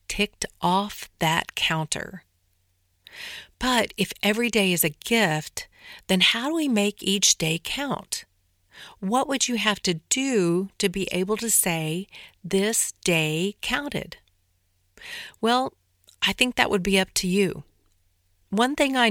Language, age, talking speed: English, 50-69, 140 wpm